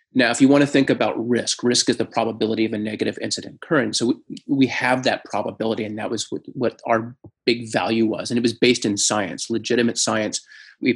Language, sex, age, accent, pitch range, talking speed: English, male, 30-49, American, 115-135 Hz, 215 wpm